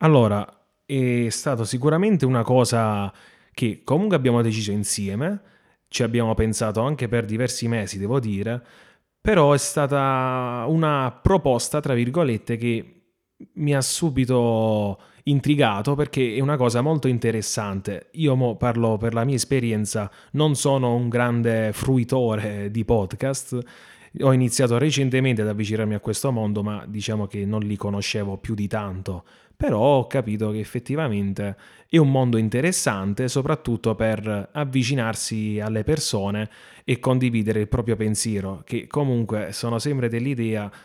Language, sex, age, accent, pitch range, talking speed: Italian, male, 30-49, native, 110-130 Hz, 135 wpm